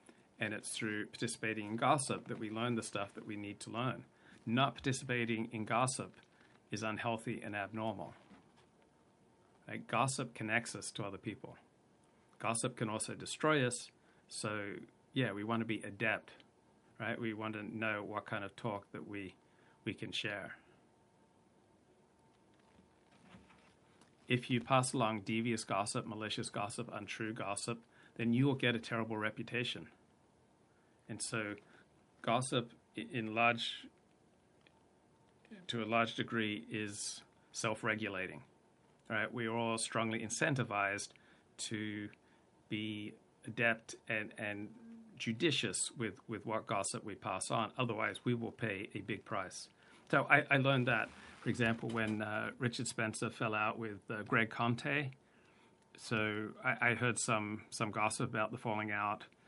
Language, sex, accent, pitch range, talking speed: English, male, American, 110-120 Hz, 140 wpm